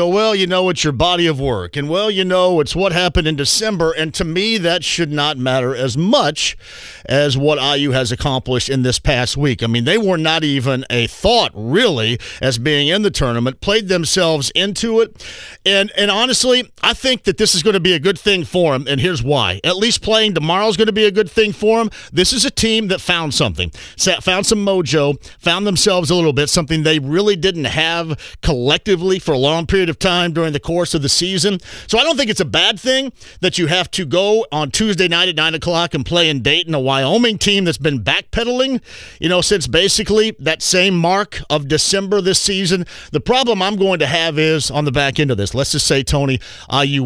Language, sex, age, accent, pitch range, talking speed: English, male, 40-59, American, 145-200 Hz, 225 wpm